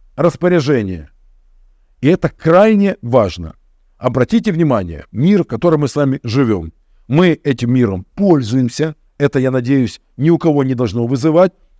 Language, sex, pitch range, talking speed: Russian, male, 130-195 Hz, 135 wpm